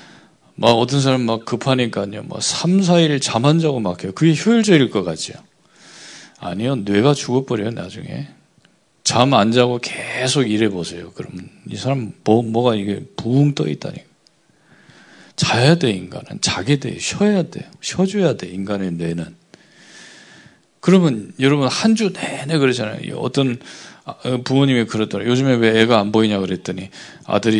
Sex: male